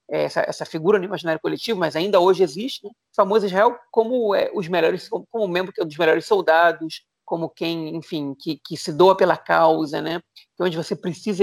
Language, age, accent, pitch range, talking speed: Portuguese, 40-59, Brazilian, 170-215 Hz, 220 wpm